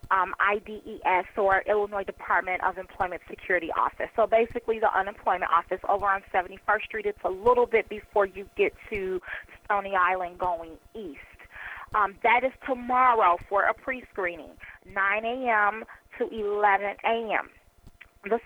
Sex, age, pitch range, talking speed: female, 30-49, 195-235 Hz, 145 wpm